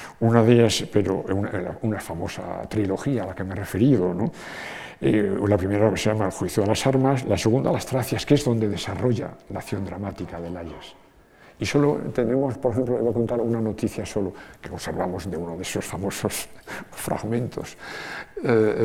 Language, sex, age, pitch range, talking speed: Spanish, male, 60-79, 95-120 Hz, 185 wpm